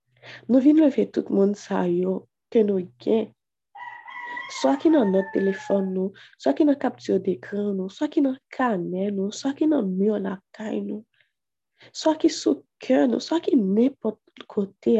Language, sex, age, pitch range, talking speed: French, female, 20-39, 195-255 Hz, 170 wpm